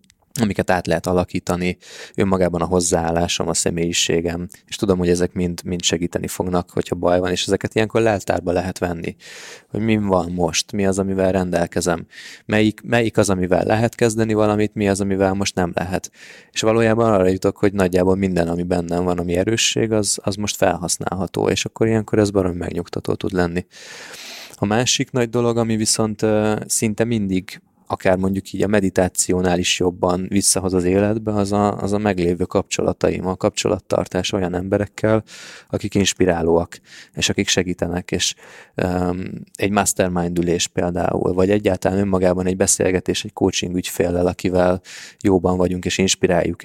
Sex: male